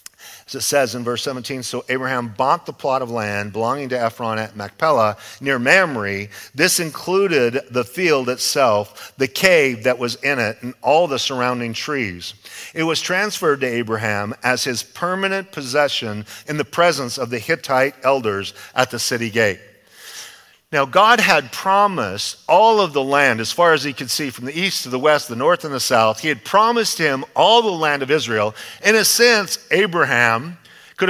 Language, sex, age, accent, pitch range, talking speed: English, male, 50-69, American, 125-180 Hz, 185 wpm